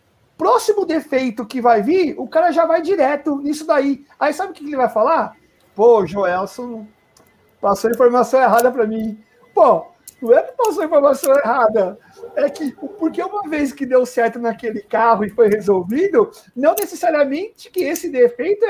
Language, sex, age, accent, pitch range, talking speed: Portuguese, male, 50-69, Brazilian, 215-300 Hz, 165 wpm